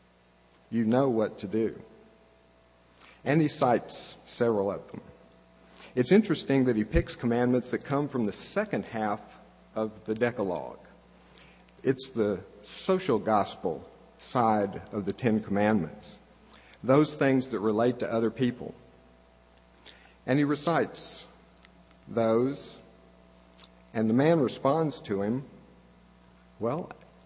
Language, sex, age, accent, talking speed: English, male, 50-69, American, 115 wpm